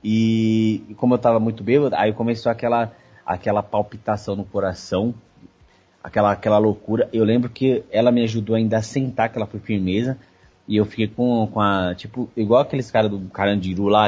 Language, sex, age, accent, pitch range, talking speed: Portuguese, male, 20-39, Brazilian, 100-125 Hz, 180 wpm